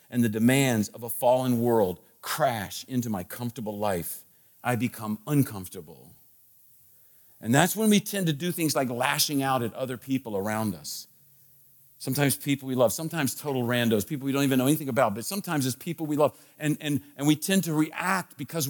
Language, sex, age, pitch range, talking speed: English, male, 50-69, 120-155 Hz, 190 wpm